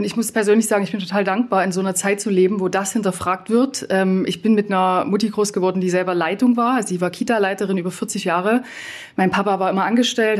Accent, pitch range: German, 185-225 Hz